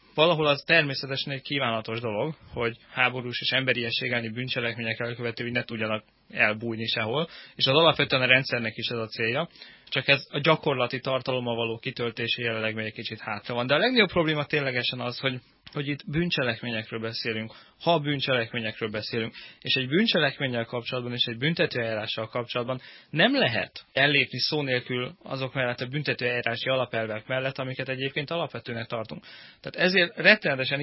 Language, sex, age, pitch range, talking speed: Hungarian, male, 20-39, 115-140 Hz, 155 wpm